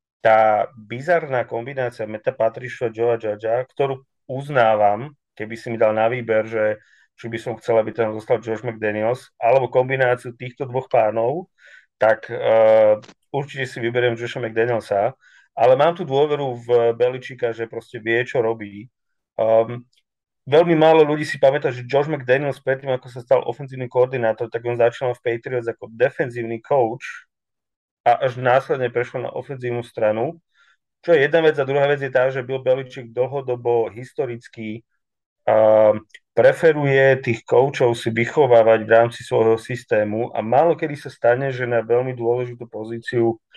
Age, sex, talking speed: 30-49, male, 155 wpm